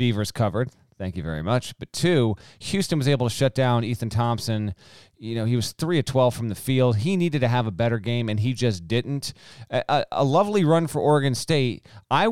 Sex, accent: male, American